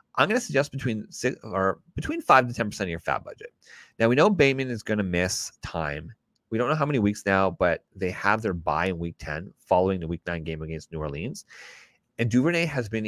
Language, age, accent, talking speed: English, 30-49, American, 235 wpm